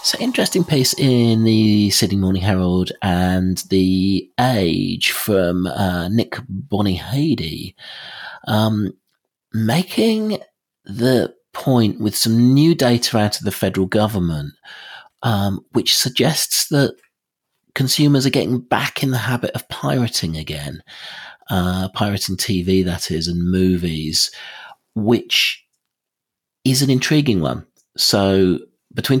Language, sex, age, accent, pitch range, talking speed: English, male, 40-59, British, 90-120 Hz, 115 wpm